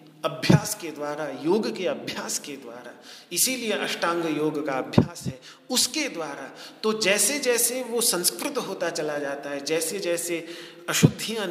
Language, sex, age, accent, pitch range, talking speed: Hindi, male, 40-59, native, 155-225 Hz, 145 wpm